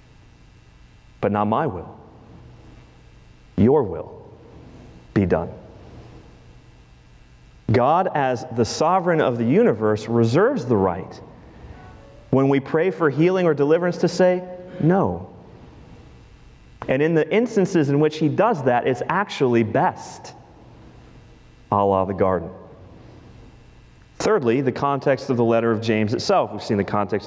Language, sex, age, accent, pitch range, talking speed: English, male, 30-49, American, 110-140 Hz, 125 wpm